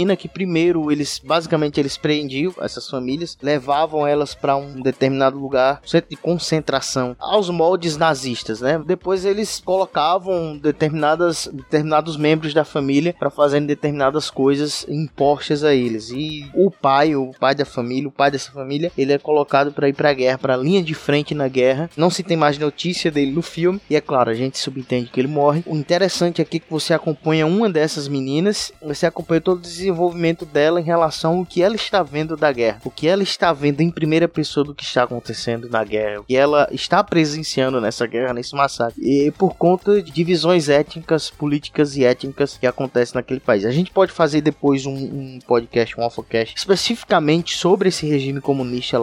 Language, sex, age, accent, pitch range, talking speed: Portuguese, male, 20-39, Brazilian, 135-165 Hz, 190 wpm